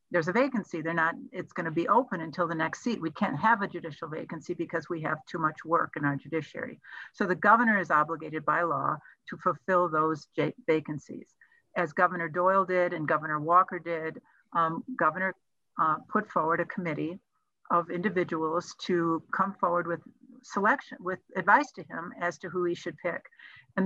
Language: English